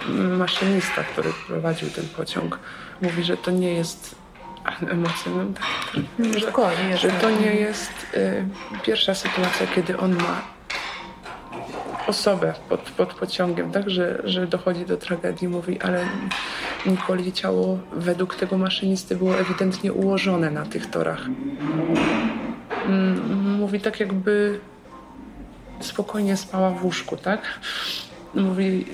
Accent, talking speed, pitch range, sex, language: native, 110 wpm, 180-205 Hz, male, Polish